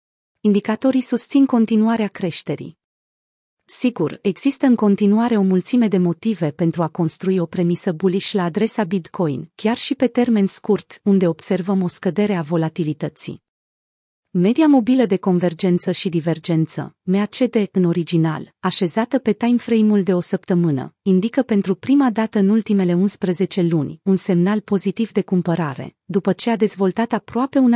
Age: 30-49